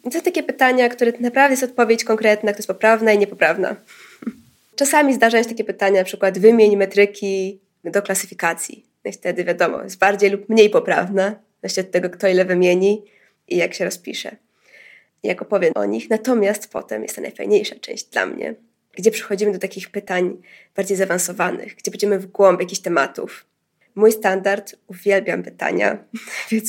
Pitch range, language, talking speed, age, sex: 195-235 Hz, Polish, 165 wpm, 20-39, female